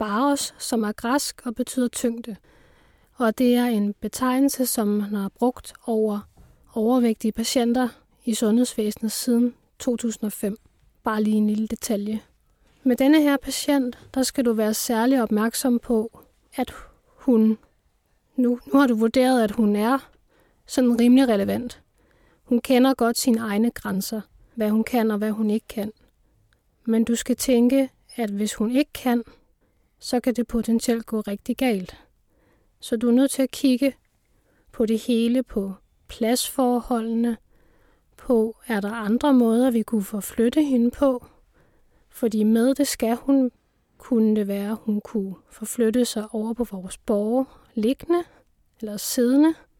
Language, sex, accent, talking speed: Danish, female, native, 150 wpm